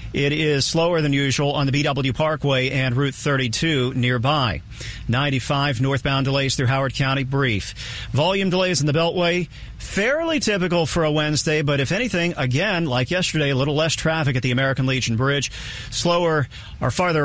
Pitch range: 125-155 Hz